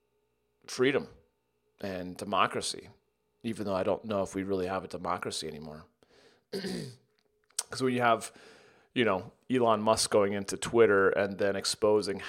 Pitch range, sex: 100-130 Hz, male